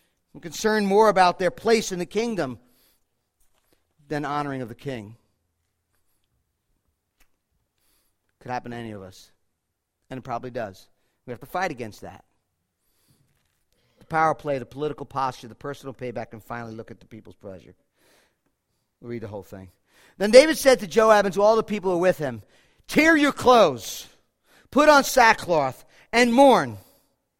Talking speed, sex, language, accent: 165 wpm, male, English, American